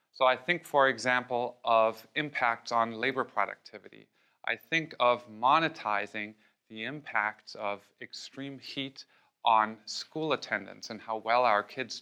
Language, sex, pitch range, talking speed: English, male, 110-135 Hz, 135 wpm